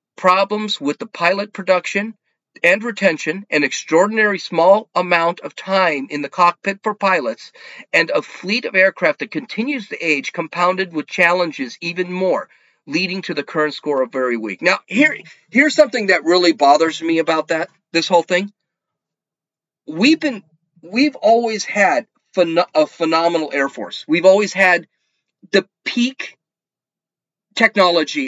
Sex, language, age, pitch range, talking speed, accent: male, English, 40-59, 160-210 Hz, 145 wpm, American